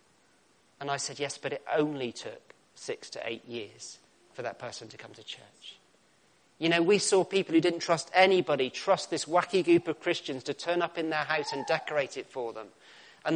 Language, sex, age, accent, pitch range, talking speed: English, male, 40-59, British, 140-175 Hz, 205 wpm